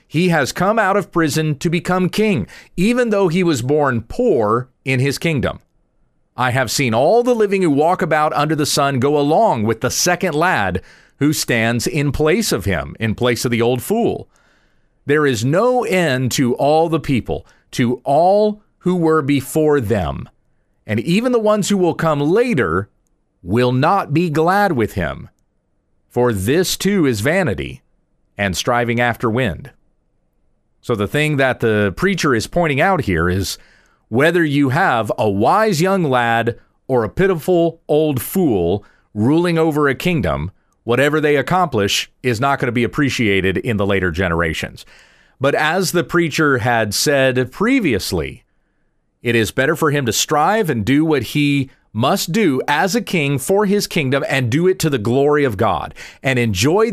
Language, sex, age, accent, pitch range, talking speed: English, male, 40-59, American, 120-170 Hz, 170 wpm